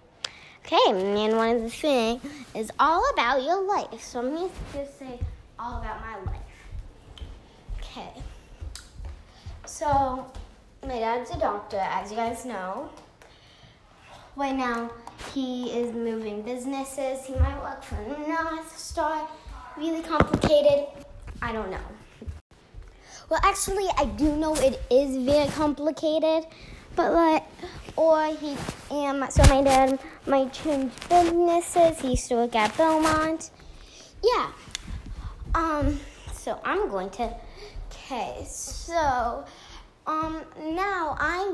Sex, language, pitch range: female, English, 230-315 Hz